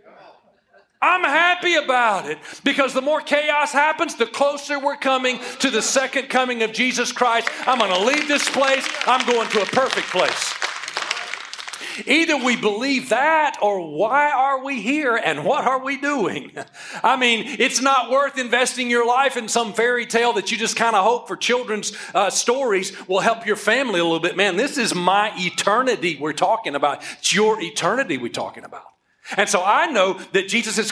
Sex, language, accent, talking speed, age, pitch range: male, English, American, 185 wpm, 40-59, 175-250 Hz